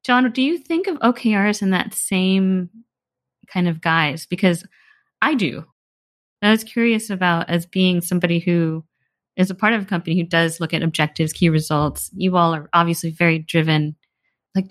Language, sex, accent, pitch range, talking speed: English, female, American, 165-200 Hz, 175 wpm